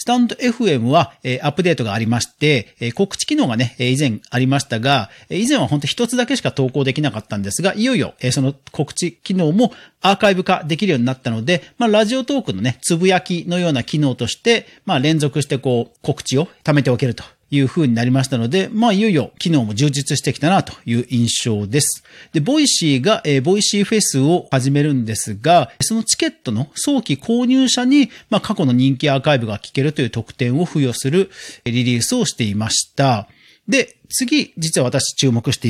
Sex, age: male, 40-59